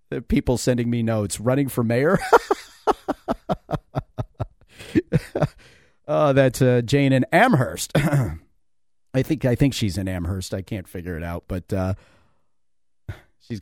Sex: male